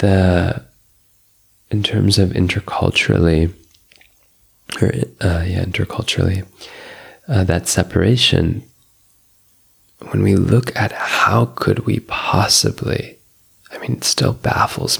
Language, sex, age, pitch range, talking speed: German, male, 20-39, 90-110 Hz, 85 wpm